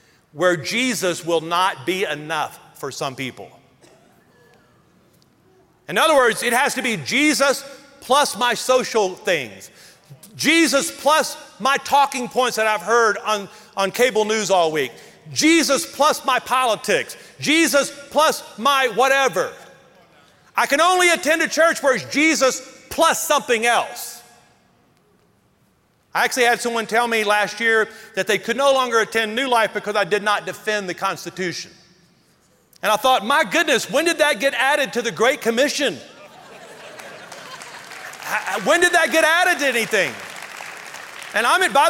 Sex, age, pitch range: male, 40-59, 220-295 Hz